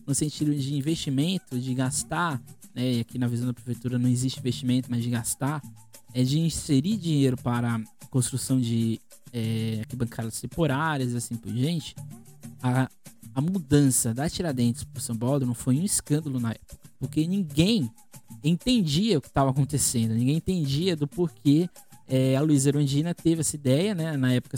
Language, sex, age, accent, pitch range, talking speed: Portuguese, male, 20-39, Brazilian, 120-165 Hz, 165 wpm